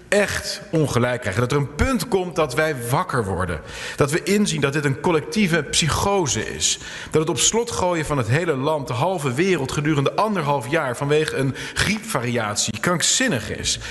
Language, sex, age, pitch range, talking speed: English, male, 40-59, 135-190 Hz, 175 wpm